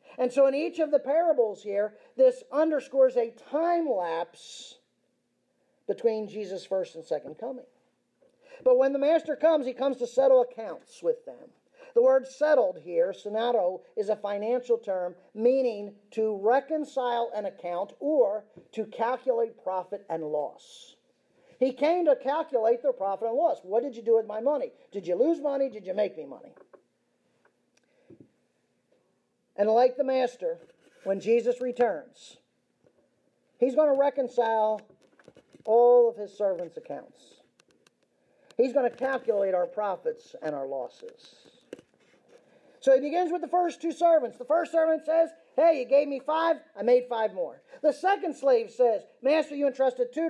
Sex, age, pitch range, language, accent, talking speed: male, 50-69, 230-320 Hz, English, American, 155 wpm